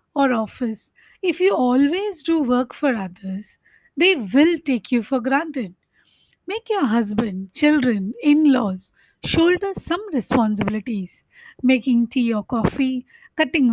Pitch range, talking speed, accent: 235-325 Hz, 120 wpm, Indian